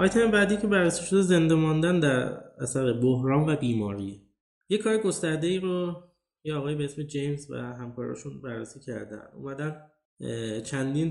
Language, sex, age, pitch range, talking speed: Persian, male, 20-39, 120-155 Hz, 145 wpm